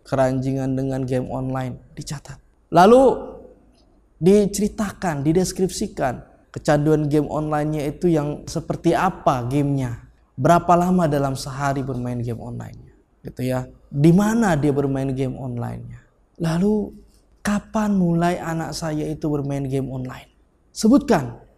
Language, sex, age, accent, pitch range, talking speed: Indonesian, male, 20-39, native, 130-165 Hz, 110 wpm